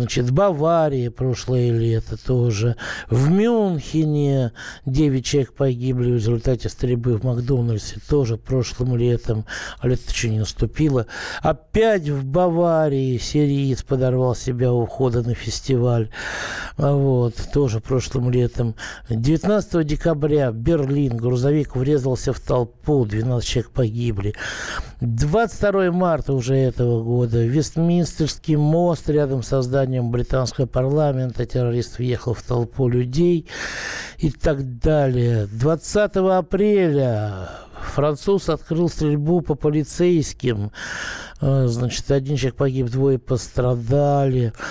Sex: male